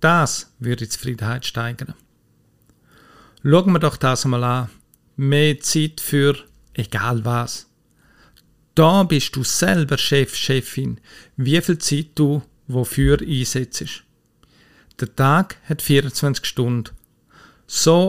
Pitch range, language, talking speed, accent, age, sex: 125-150 Hz, German, 115 wpm, Austrian, 50-69, male